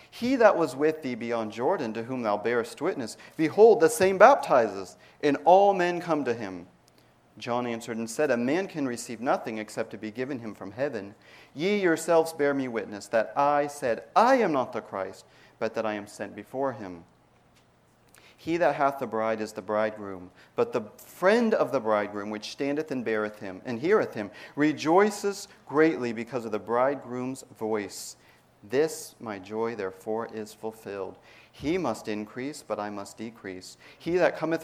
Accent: American